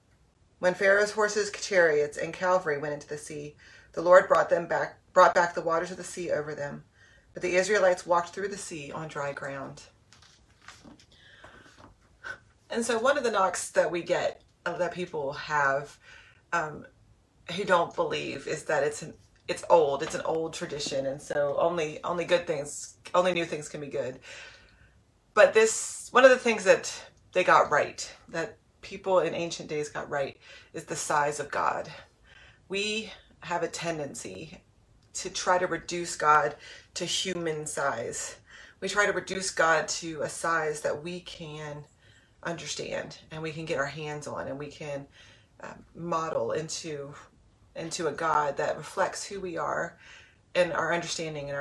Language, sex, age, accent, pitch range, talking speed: English, female, 30-49, American, 150-190 Hz, 165 wpm